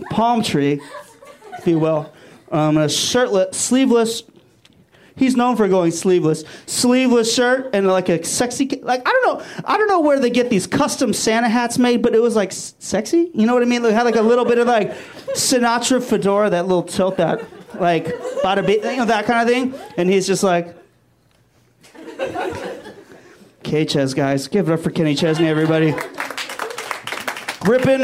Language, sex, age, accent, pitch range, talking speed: English, male, 30-49, American, 170-250 Hz, 180 wpm